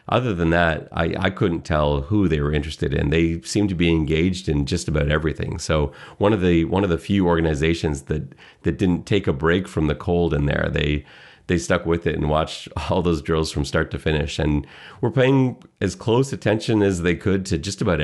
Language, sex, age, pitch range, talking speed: English, male, 40-59, 80-105 Hz, 225 wpm